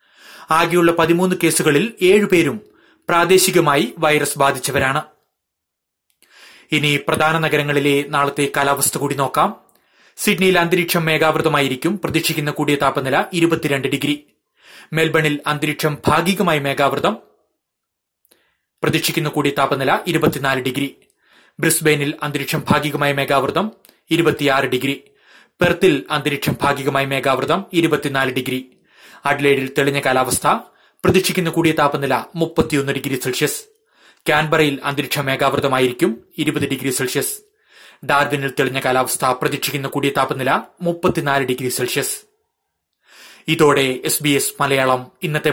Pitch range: 140-165 Hz